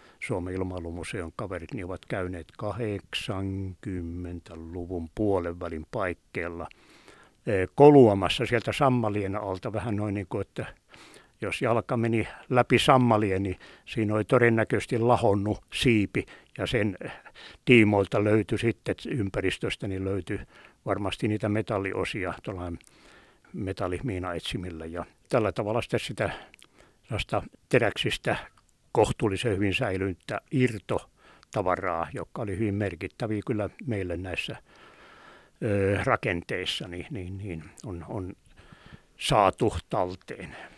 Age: 60-79